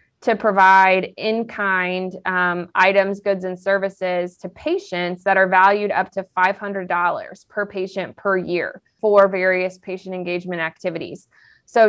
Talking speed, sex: 125 wpm, female